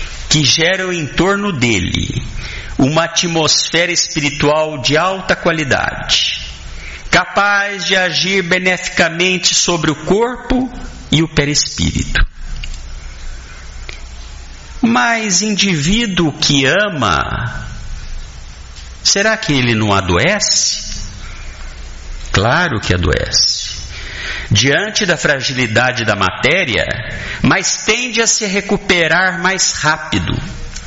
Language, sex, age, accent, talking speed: Portuguese, male, 60-79, Brazilian, 85 wpm